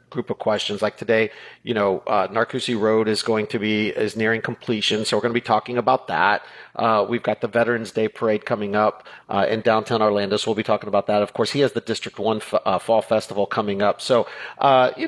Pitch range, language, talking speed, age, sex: 105-125 Hz, English, 240 wpm, 40-59, male